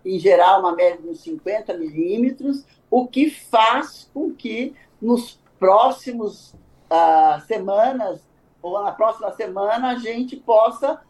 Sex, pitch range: male, 190-270 Hz